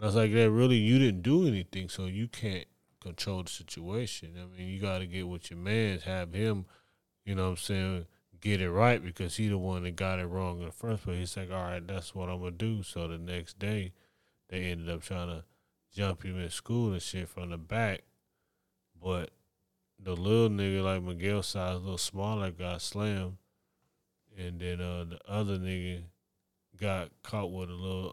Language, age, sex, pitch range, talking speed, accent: English, 20-39, male, 90-100 Hz, 205 wpm, American